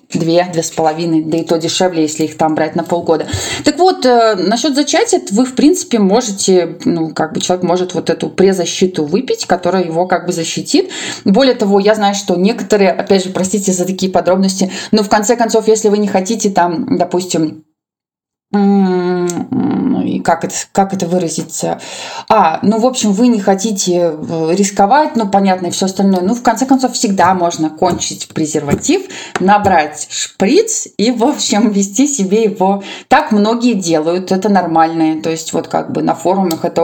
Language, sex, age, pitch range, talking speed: Russian, female, 20-39, 170-220 Hz, 170 wpm